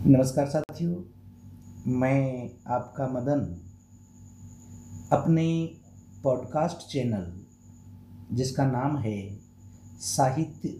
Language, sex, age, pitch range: Hindi, male, 50-69, 100-135 Hz